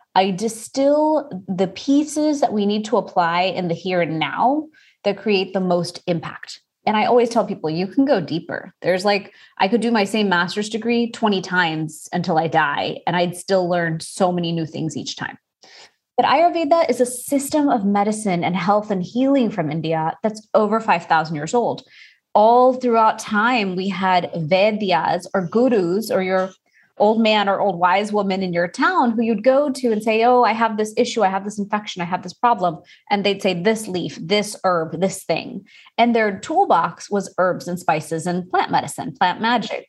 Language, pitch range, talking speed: English, 175-225 Hz, 195 wpm